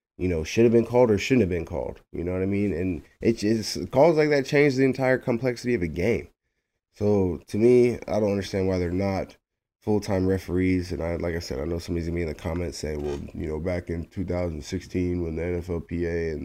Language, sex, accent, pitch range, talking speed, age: English, male, American, 85-110 Hz, 235 wpm, 20-39